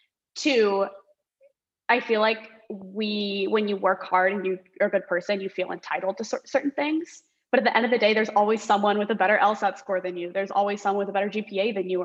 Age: 20-39